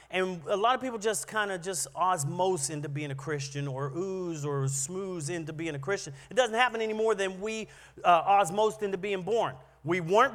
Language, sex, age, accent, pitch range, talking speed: English, male, 40-59, American, 155-205 Hz, 210 wpm